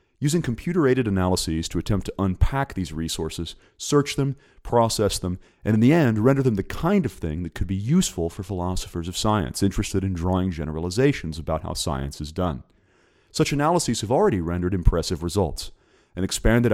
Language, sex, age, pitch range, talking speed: English, male, 40-59, 85-120 Hz, 175 wpm